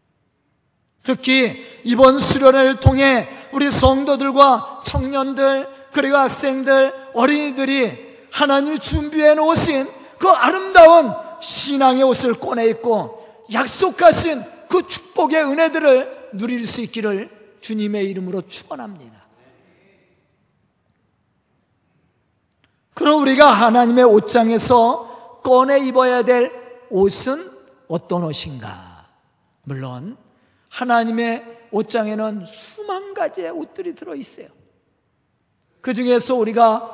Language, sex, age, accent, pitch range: Korean, male, 40-59, native, 195-270 Hz